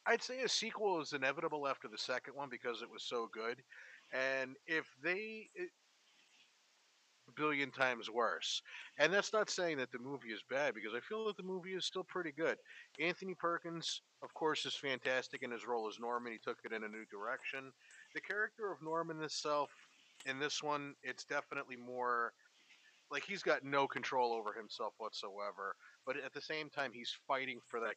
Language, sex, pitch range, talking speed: English, male, 125-160 Hz, 190 wpm